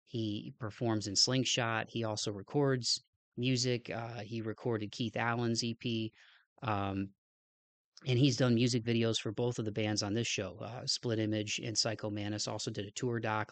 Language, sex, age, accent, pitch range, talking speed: English, male, 30-49, American, 110-120 Hz, 175 wpm